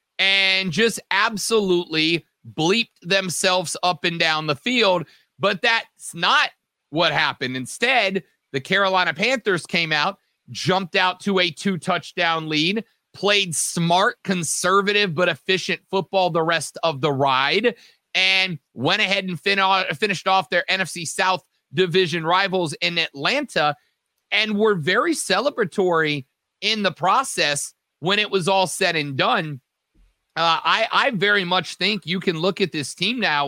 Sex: male